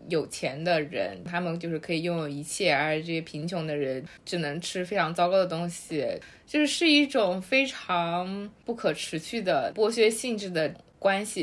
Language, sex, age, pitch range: Chinese, female, 20-39, 170-220 Hz